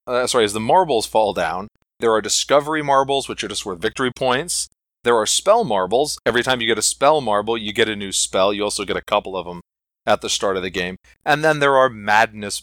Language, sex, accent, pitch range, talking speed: English, male, American, 100-135 Hz, 240 wpm